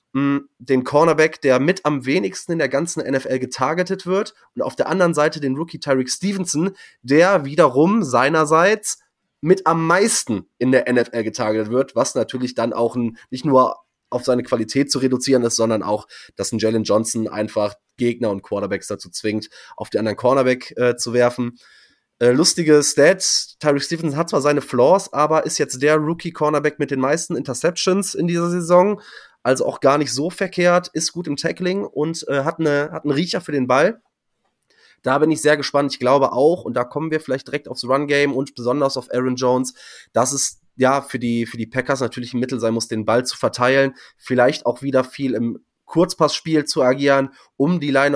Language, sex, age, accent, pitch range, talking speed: German, male, 20-39, German, 125-155 Hz, 190 wpm